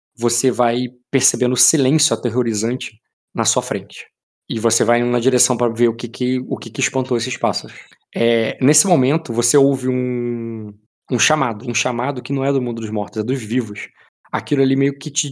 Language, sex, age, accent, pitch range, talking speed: Portuguese, male, 20-39, Brazilian, 115-135 Hz, 200 wpm